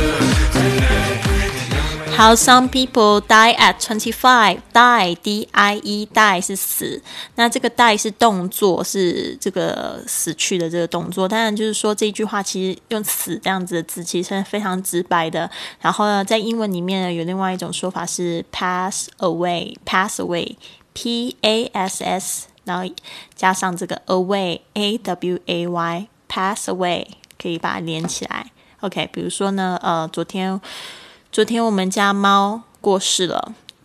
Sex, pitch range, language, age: female, 175-215 Hz, Chinese, 20-39